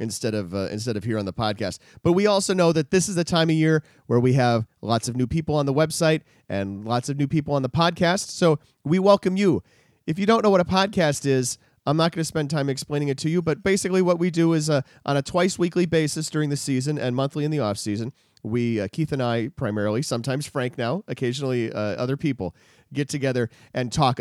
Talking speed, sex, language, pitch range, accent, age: 245 wpm, male, English, 125-165 Hz, American, 30-49